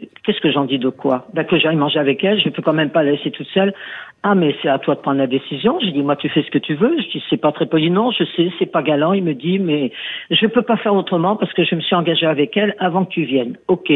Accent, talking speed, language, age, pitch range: French, 315 wpm, French, 50-69, 150-200 Hz